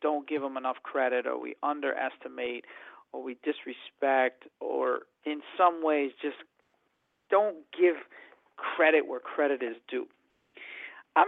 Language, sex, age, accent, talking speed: English, male, 40-59, American, 130 wpm